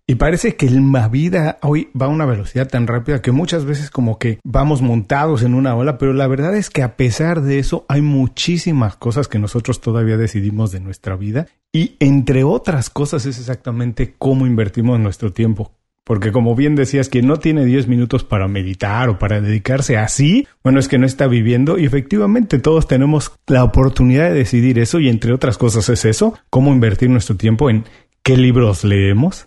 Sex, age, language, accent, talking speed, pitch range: male, 40-59, Spanish, Mexican, 195 wpm, 115-145 Hz